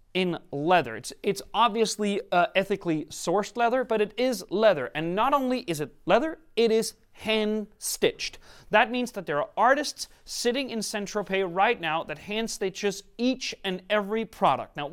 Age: 30-49